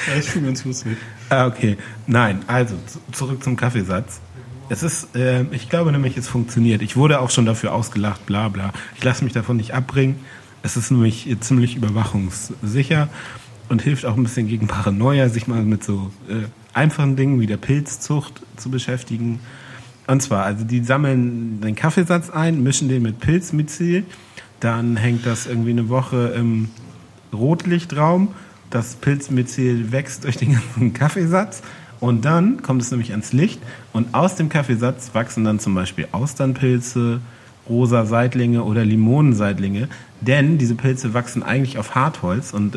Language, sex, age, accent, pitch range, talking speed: German, male, 40-59, German, 110-135 Hz, 155 wpm